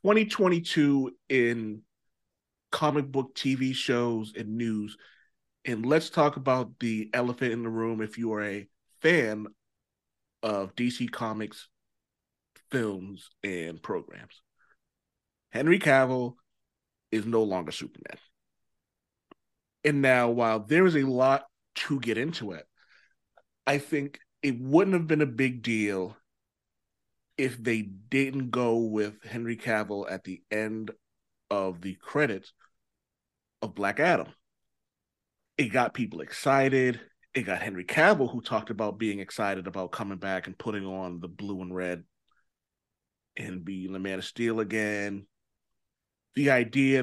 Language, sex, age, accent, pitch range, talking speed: English, male, 30-49, American, 105-130 Hz, 130 wpm